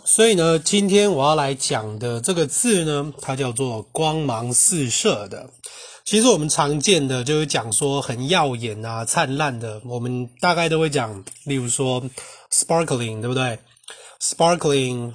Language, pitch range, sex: Chinese, 125-160 Hz, male